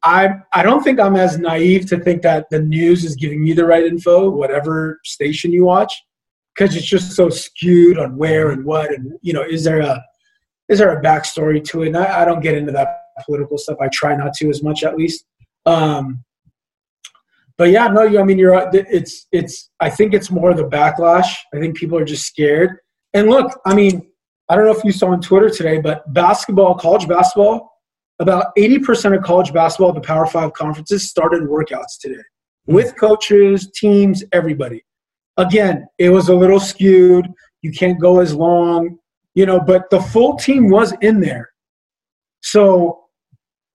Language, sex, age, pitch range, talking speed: English, male, 20-39, 155-195 Hz, 190 wpm